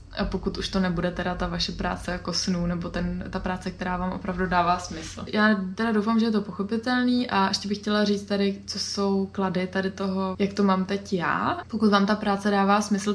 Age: 20-39